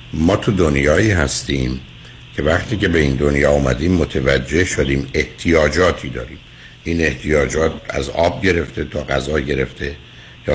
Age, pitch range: 60-79, 75-105 Hz